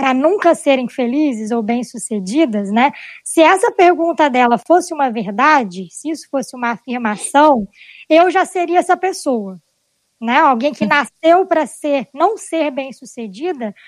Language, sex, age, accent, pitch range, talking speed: Portuguese, male, 20-39, Brazilian, 255-335 Hz, 145 wpm